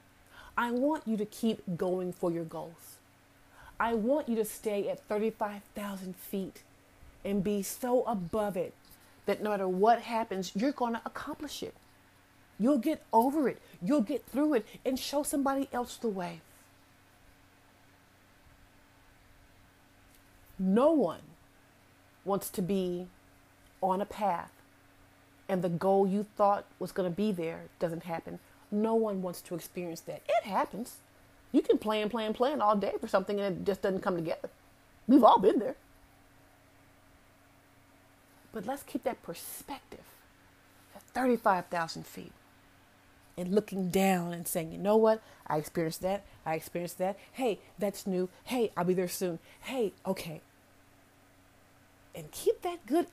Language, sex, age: English, female, 40-59